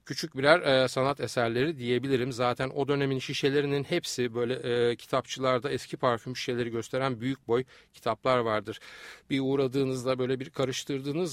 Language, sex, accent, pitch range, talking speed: Turkish, male, native, 115-140 Hz, 145 wpm